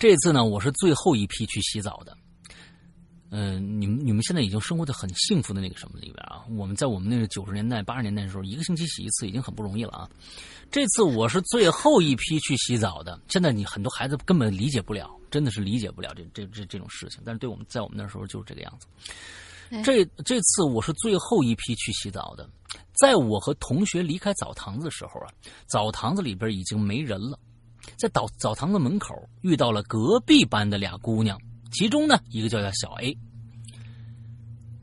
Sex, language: male, Chinese